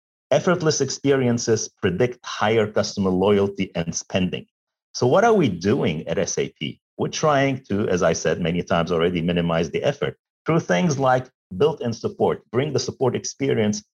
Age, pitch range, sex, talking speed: 50-69, 105-145 Hz, male, 155 wpm